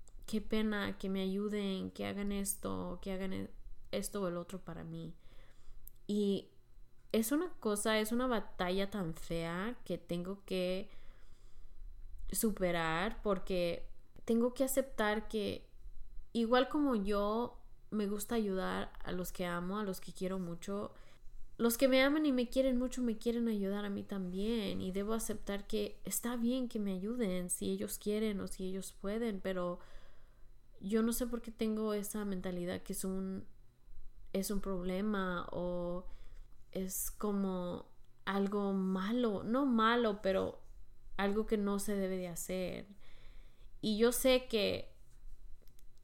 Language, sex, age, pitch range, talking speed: English, female, 20-39, 185-230 Hz, 145 wpm